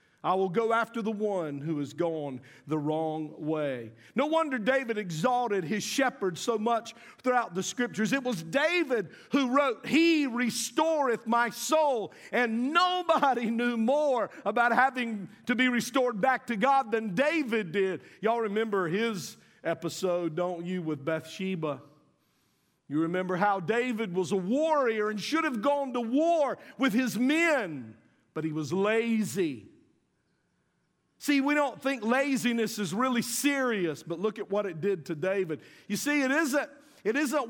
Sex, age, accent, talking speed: male, 50-69, American, 155 wpm